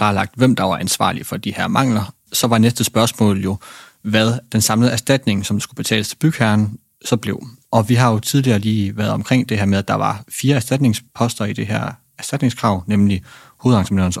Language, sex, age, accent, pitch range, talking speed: Danish, male, 30-49, native, 105-125 Hz, 205 wpm